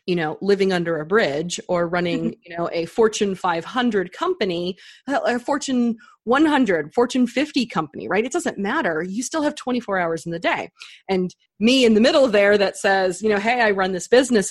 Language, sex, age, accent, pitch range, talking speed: English, female, 30-49, American, 170-225 Hz, 195 wpm